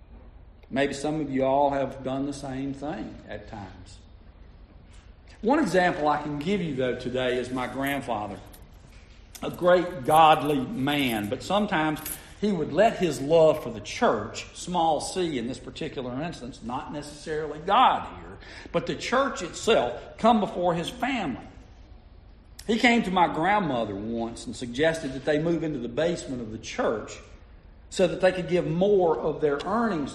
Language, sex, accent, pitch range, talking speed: English, male, American, 105-165 Hz, 160 wpm